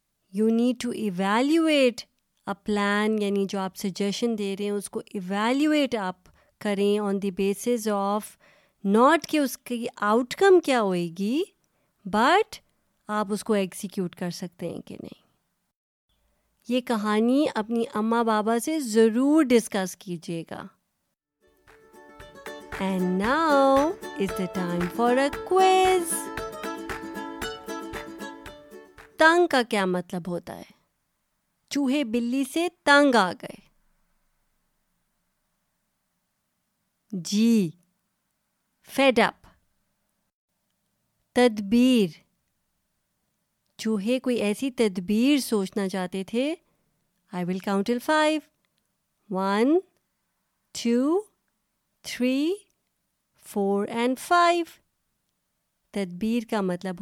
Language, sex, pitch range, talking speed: Urdu, female, 195-260 Hz, 95 wpm